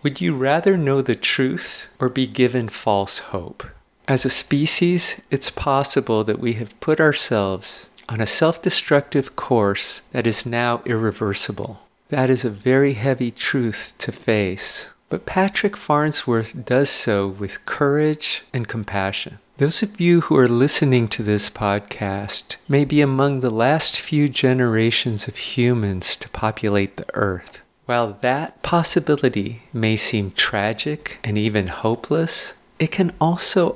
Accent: American